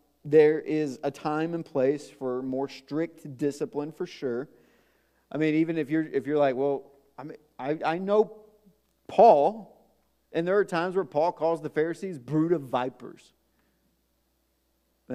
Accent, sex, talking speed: American, male, 160 wpm